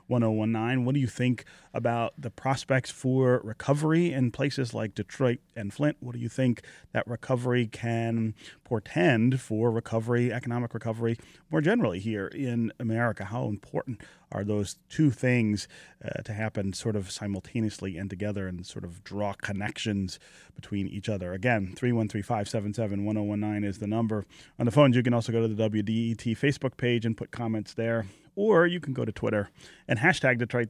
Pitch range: 105-125 Hz